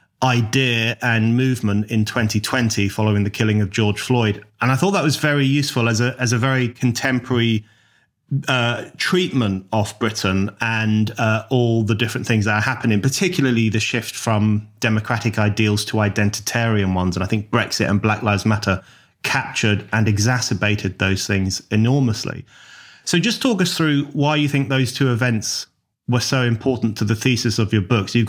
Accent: British